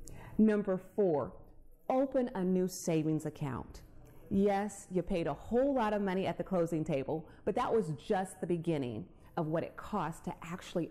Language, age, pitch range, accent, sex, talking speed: English, 30-49, 160-215 Hz, American, female, 170 wpm